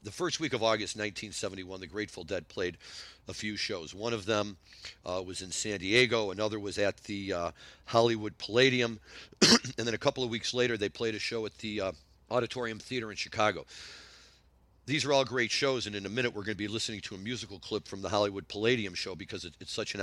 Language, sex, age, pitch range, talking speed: English, male, 50-69, 100-120 Hz, 220 wpm